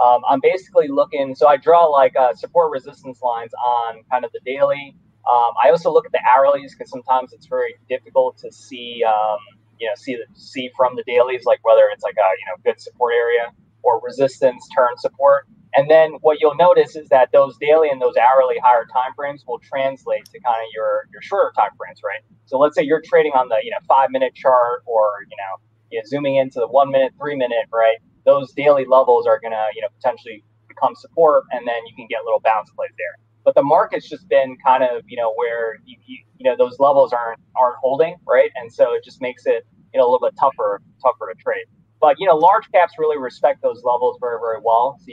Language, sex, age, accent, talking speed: English, male, 20-39, American, 230 wpm